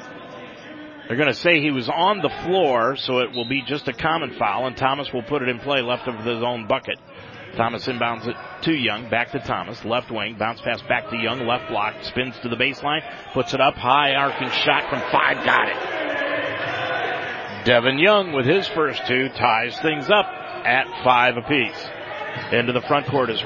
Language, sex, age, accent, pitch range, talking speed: English, male, 40-59, American, 120-150 Hz, 195 wpm